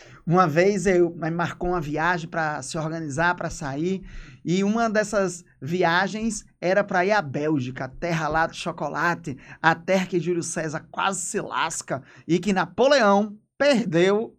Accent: Brazilian